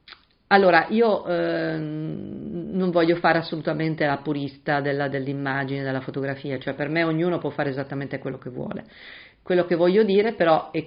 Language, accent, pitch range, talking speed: Italian, native, 145-180 Hz, 155 wpm